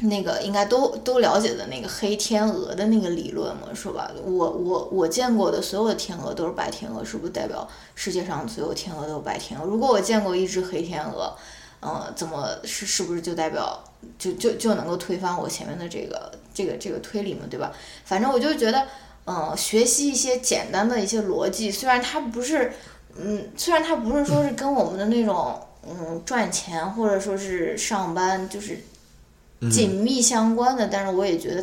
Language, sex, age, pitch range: Chinese, female, 20-39, 180-225 Hz